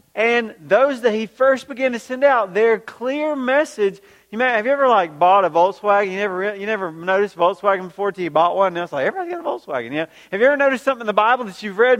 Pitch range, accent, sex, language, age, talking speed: 180-245 Hz, American, male, English, 40-59, 260 wpm